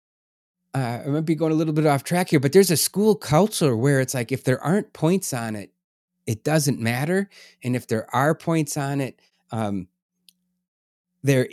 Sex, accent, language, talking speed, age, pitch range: male, American, English, 195 wpm, 30-49, 125-165 Hz